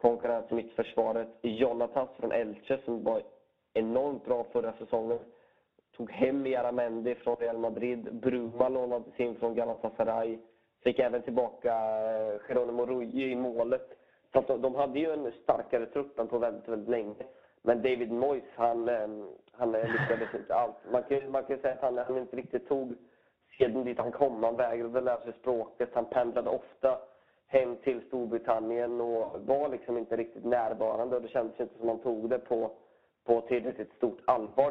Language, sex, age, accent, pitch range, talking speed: English, male, 30-49, Swedish, 115-130 Hz, 165 wpm